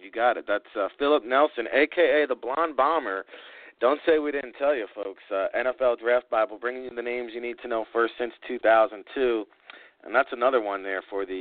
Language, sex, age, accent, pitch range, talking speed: English, male, 40-59, American, 105-125 Hz, 210 wpm